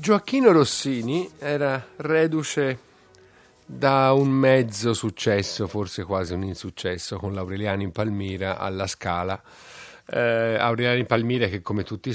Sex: male